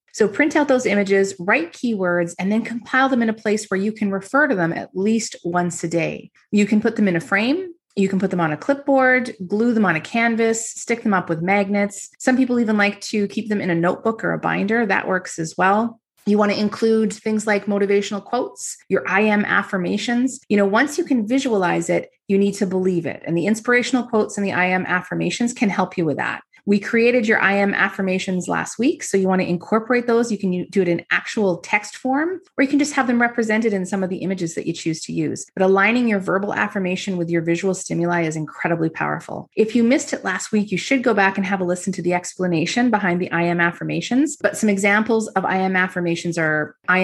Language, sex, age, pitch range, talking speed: English, female, 30-49, 180-230 Hz, 235 wpm